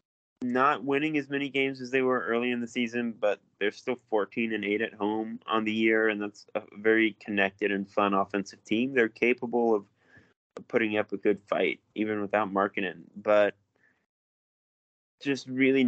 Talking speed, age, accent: 175 wpm, 20-39, American